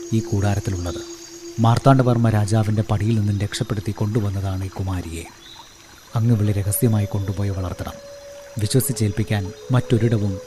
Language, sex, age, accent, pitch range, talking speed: Malayalam, male, 30-49, native, 105-125 Hz, 105 wpm